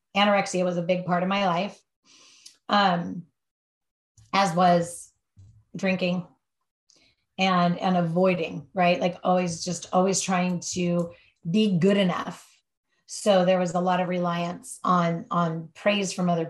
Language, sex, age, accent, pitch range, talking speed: English, female, 30-49, American, 175-200 Hz, 135 wpm